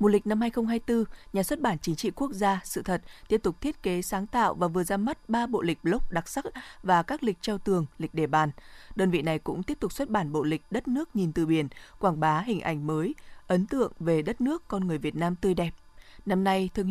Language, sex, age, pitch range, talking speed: Vietnamese, female, 20-39, 170-220 Hz, 250 wpm